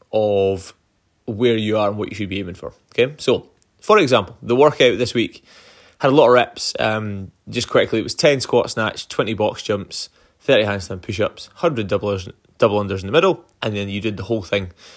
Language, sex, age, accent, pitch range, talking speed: English, male, 20-39, British, 100-120 Hz, 215 wpm